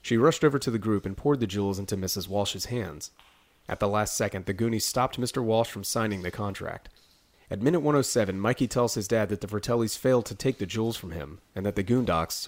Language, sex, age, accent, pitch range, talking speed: English, male, 30-49, American, 95-120 Hz, 230 wpm